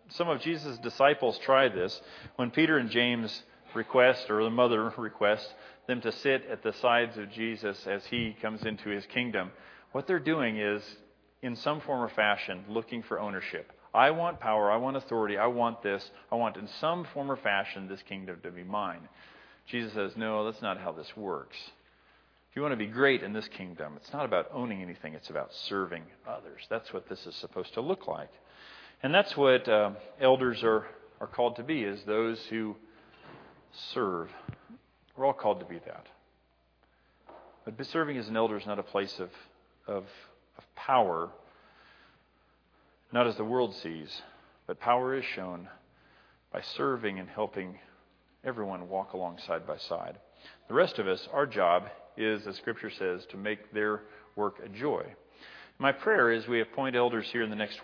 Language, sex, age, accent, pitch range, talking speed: English, male, 40-59, American, 100-125 Hz, 180 wpm